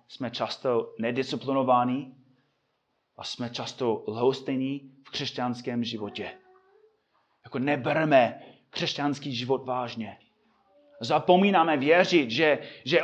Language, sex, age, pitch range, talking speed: Czech, male, 30-49, 165-235 Hz, 85 wpm